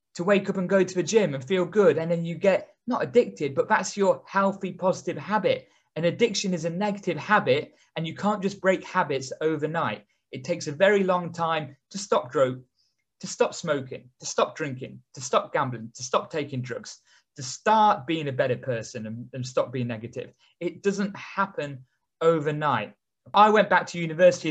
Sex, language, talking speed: male, English, 190 wpm